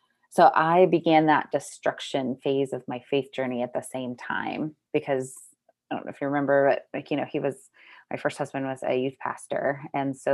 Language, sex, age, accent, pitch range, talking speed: English, female, 20-39, American, 135-155 Hz, 210 wpm